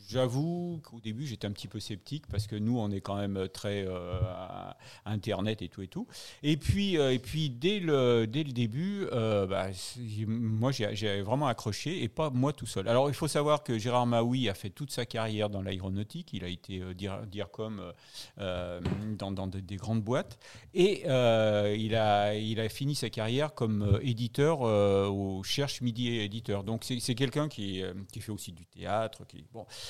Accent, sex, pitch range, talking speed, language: French, male, 105-130 Hz, 200 wpm, French